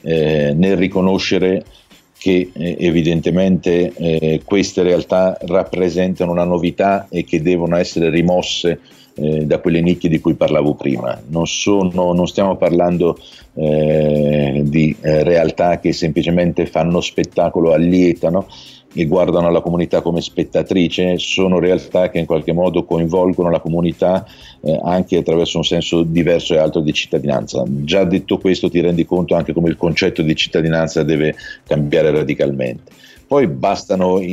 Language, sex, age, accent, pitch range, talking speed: Italian, male, 50-69, native, 80-90 Hz, 140 wpm